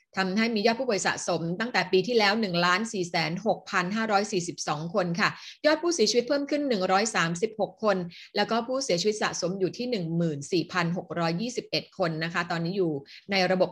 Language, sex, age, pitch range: Thai, female, 30-49, 185-235 Hz